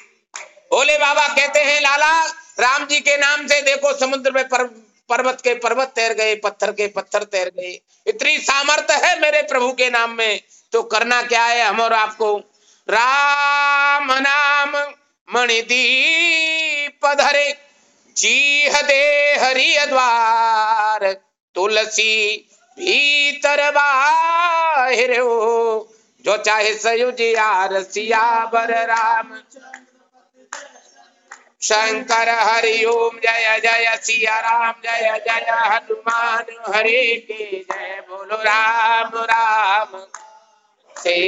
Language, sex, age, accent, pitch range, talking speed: Hindi, male, 50-69, native, 215-280 Hz, 95 wpm